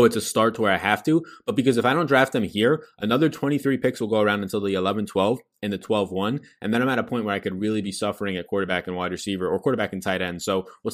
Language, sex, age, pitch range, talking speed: English, male, 20-39, 95-130 Hz, 290 wpm